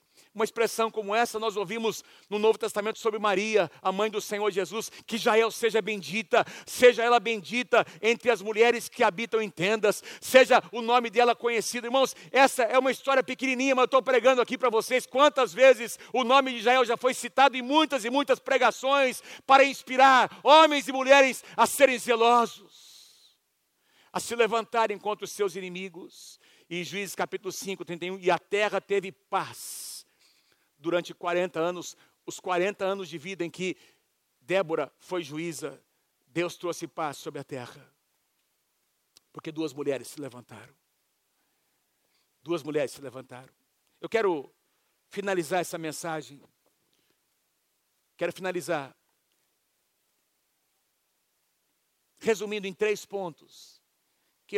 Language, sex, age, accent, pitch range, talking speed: Portuguese, male, 50-69, Brazilian, 175-245 Hz, 140 wpm